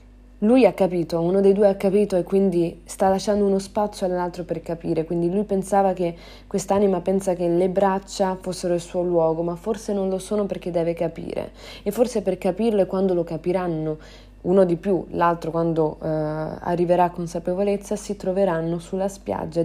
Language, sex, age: Italian, female, 20-39